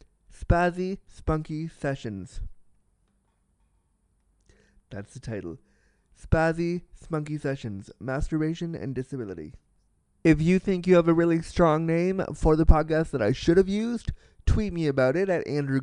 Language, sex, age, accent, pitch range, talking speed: English, male, 20-39, American, 115-155 Hz, 135 wpm